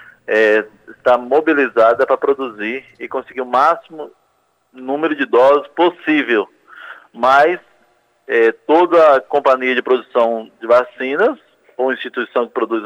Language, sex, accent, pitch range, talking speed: Portuguese, male, Brazilian, 130-160 Hz, 110 wpm